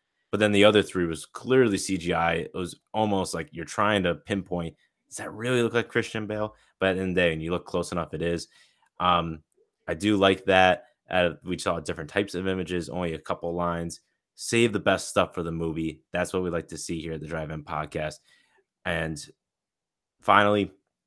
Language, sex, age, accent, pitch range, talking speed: English, male, 20-39, American, 85-105 Hz, 200 wpm